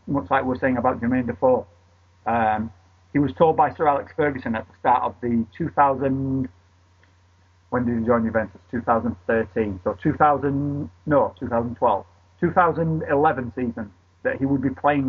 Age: 30-49